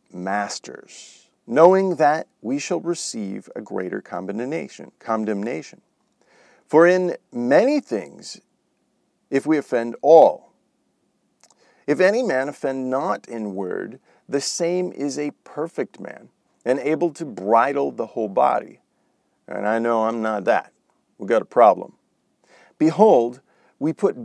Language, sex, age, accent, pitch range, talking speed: English, male, 50-69, American, 120-170 Hz, 125 wpm